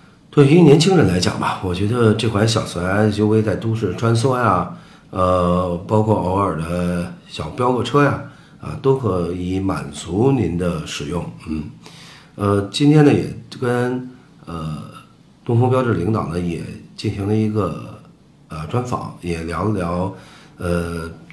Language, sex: Chinese, male